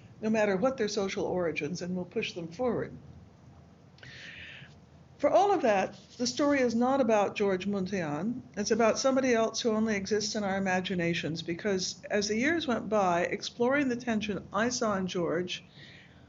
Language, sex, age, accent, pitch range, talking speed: English, female, 60-79, American, 185-240 Hz, 165 wpm